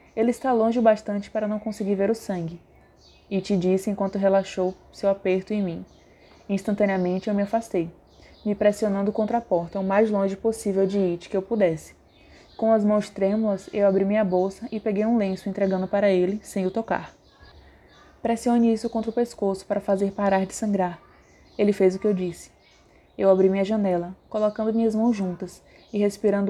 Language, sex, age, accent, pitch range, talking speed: Portuguese, female, 20-39, Brazilian, 190-215 Hz, 190 wpm